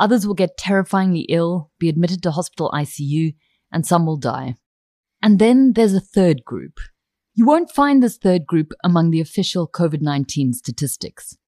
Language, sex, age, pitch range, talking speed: English, female, 30-49, 155-210 Hz, 160 wpm